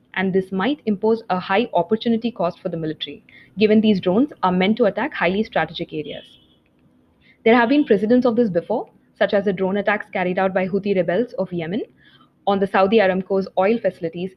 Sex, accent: female, Indian